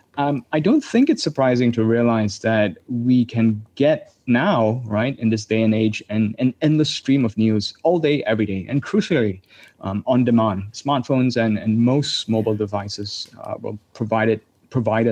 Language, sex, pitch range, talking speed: English, male, 110-140 Hz, 170 wpm